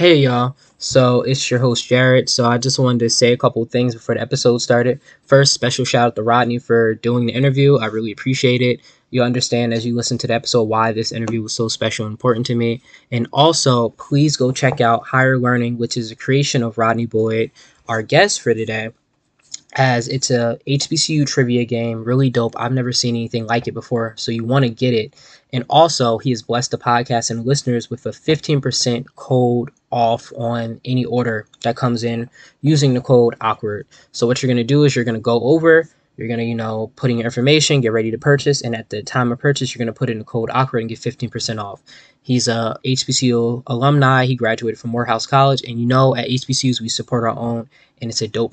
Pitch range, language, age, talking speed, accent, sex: 115-130 Hz, English, 10-29, 225 wpm, American, male